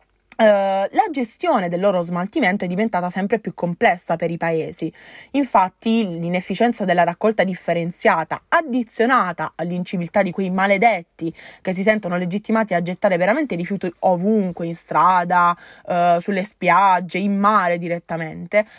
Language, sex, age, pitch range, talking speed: Italian, female, 20-39, 175-220 Hz, 125 wpm